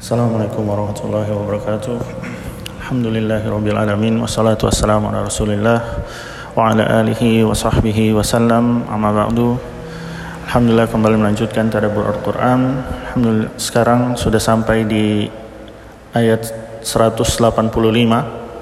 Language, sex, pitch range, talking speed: Indonesian, male, 110-130 Hz, 75 wpm